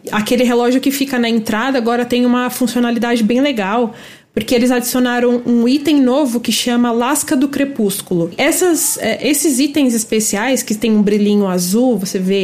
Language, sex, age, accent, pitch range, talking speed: Portuguese, female, 20-39, Brazilian, 215-270 Hz, 165 wpm